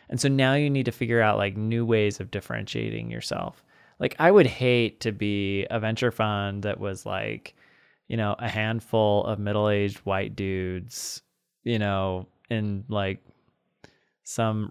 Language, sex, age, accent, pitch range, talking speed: English, male, 20-39, American, 100-120 Hz, 160 wpm